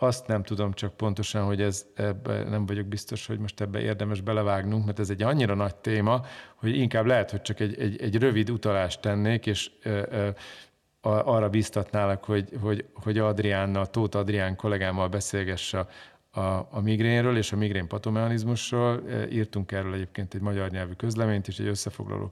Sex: male